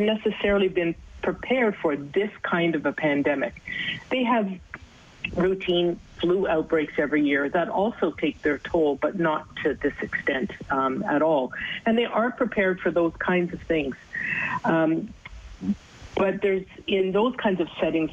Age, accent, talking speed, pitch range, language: 50-69, American, 150 wpm, 150-190 Hz, English